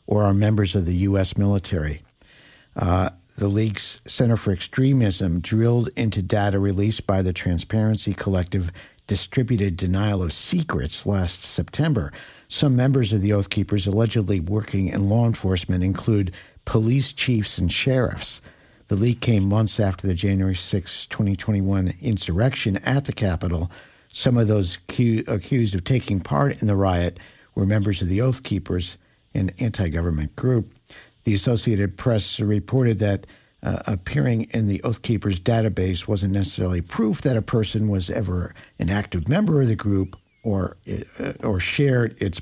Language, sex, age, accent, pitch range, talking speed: English, male, 60-79, American, 95-115 Hz, 150 wpm